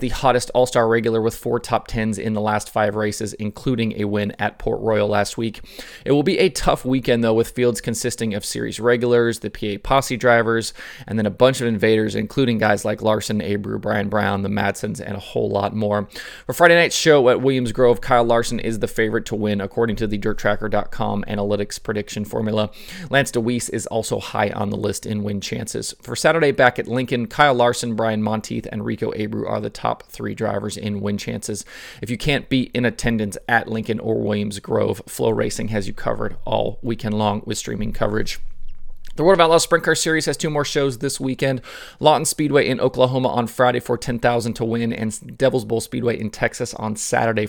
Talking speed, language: 205 wpm, English